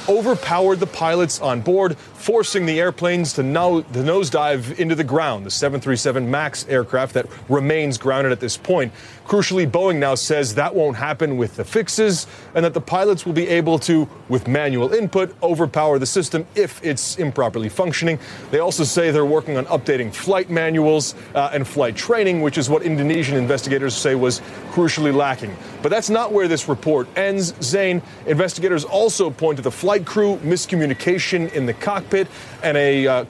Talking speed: 175 wpm